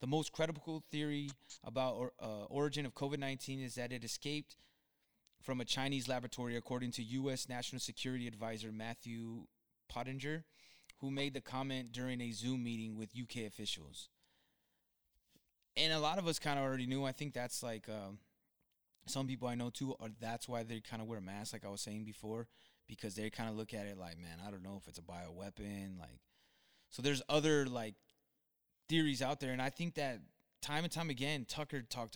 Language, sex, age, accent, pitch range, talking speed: English, male, 20-39, American, 110-140 Hz, 190 wpm